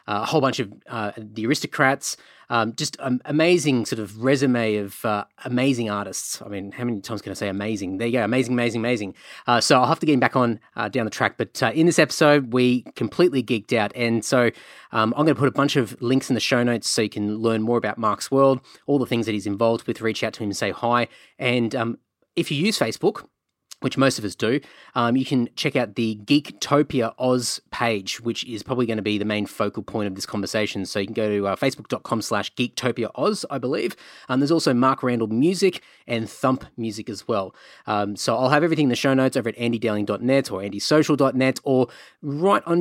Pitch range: 110-145 Hz